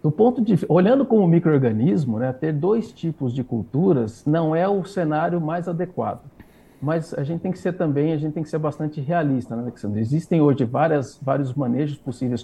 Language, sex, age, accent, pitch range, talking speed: Portuguese, male, 50-69, Brazilian, 130-165 Hz, 190 wpm